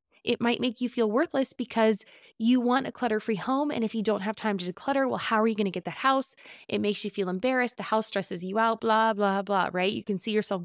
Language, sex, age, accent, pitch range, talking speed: English, female, 20-39, American, 190-240 Hz, 265 wpm